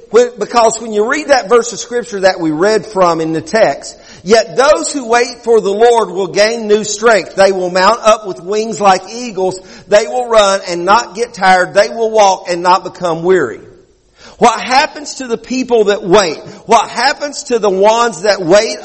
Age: 50-69